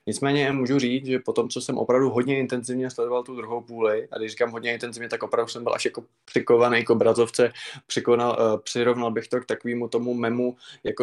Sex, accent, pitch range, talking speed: male, native, 115-130 Hz, 210 wpm